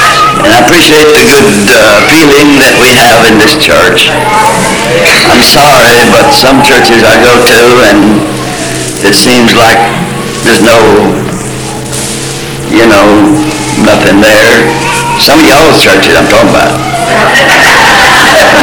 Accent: American